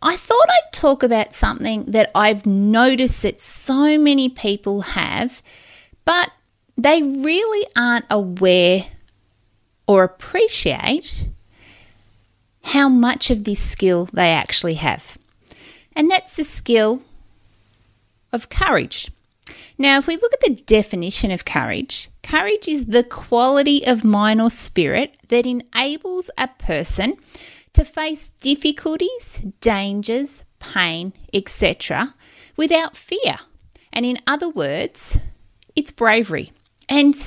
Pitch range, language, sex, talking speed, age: 195-290 Hz, English, female, 115 wpm, 30-49